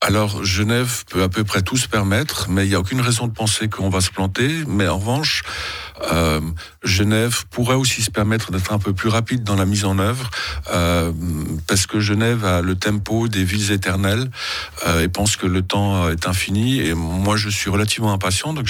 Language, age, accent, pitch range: French, 50-69, French, 95-115 Hz